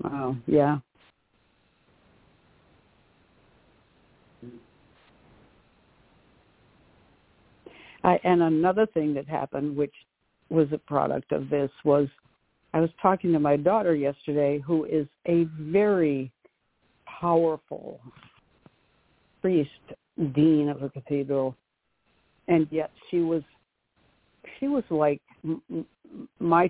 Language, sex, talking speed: English, female, 90 wpm